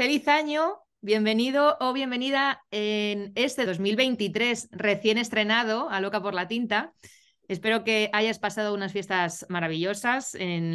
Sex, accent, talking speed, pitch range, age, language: female, Spanish, 130 wpm, 180-220 Hz, 20-39, Spanish